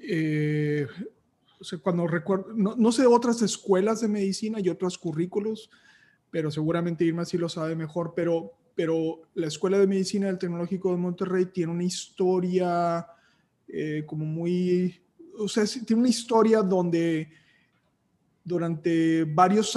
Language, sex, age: Spanish, male, 20-39